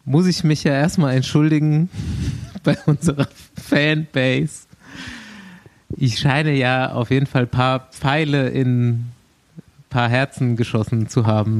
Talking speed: 130 wpm